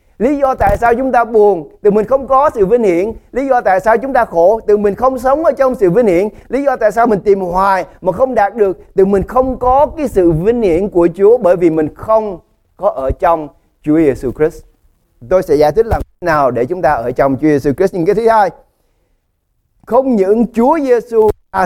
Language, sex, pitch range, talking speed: English, male, 170-250 Hz, 235 wpm